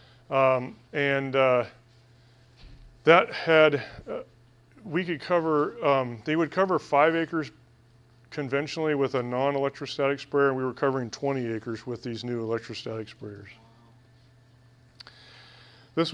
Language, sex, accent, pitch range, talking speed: English, male, American, 125-150 Hz, 120 wpm